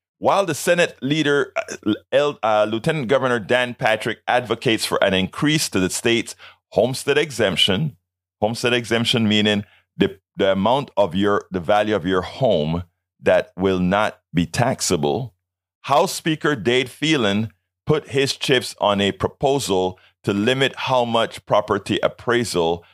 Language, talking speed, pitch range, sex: English, 140 wpm, 90-125 Hz, male